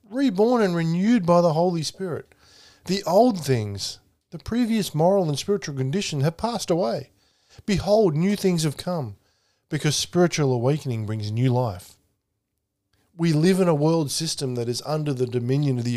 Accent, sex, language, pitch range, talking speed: Australian, male, English, 120-170 Hz, 160 wpm